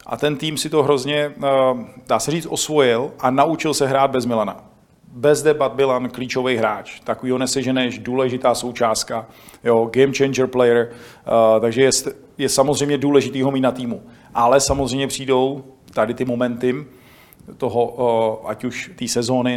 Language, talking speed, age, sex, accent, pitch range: Czech, 145 wpm, 40-59, male, native, 115-135 Hz